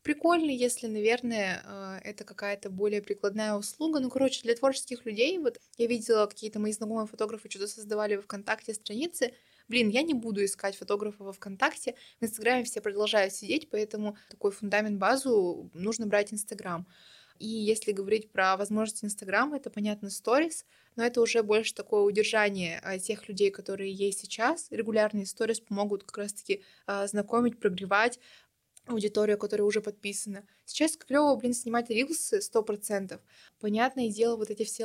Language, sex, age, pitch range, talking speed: Russian, female, 20-39, 210-240 Hz, 150 wpm